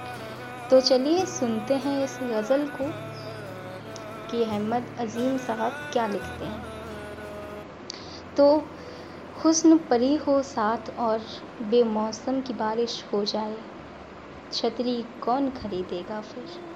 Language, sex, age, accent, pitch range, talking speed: Hindi, female, 20-39, native, 215-265 Hz, 105 wpm